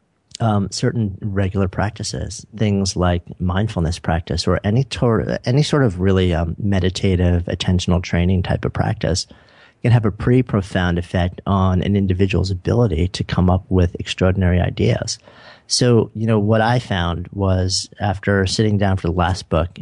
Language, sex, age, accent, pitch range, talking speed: English, male, 40-59, American, 90-105 Hz, 155 wpm